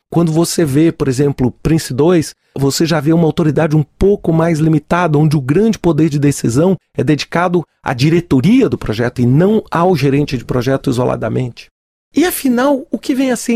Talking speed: 185 wpm